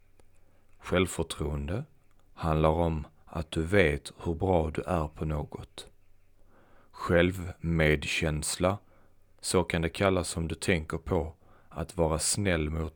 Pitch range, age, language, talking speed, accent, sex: 80-95 Hz, 40-59, Swedish, 120 wpm, native, male